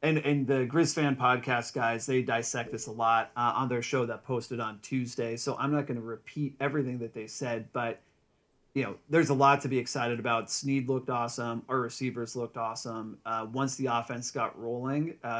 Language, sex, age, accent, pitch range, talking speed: English, male, 30-49, American, 120-140 Hz, 205 wpm